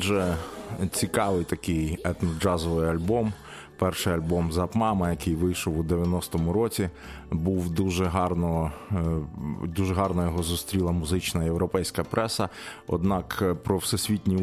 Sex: male